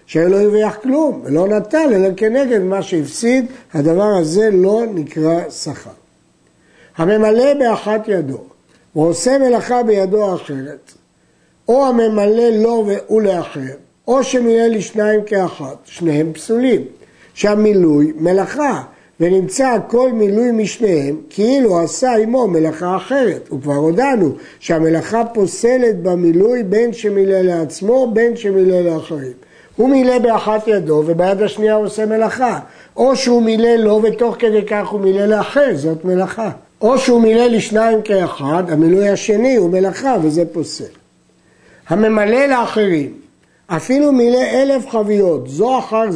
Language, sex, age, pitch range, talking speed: Hebrew, male, 60-79, 170-230 Hz, 125 wpm